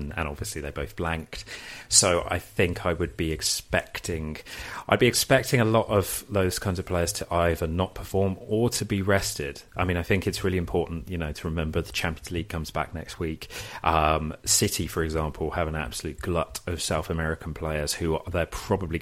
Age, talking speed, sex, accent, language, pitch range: 30-49, 200 wpm, male, British, English, 75-90 Hz